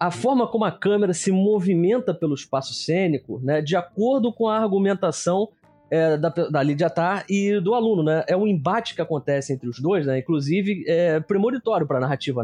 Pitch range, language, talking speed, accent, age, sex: 145-200 Hz, Portuguese, 195 wpm, Brazilian, 20-39, male